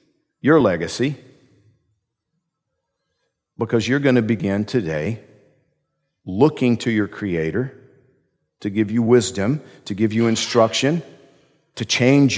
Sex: male